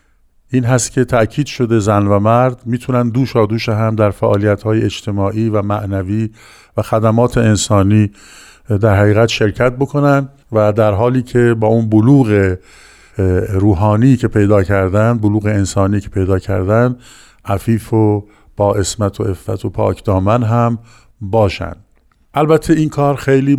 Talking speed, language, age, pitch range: 140 wpm, Persian, 50-69, 105-120 Hz